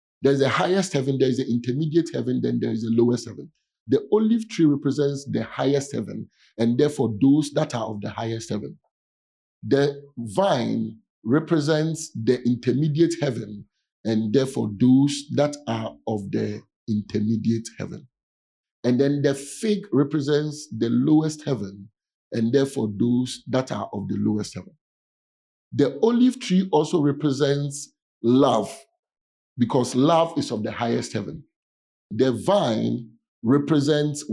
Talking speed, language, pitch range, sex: 135 wpm, English, 115-150 Hz, male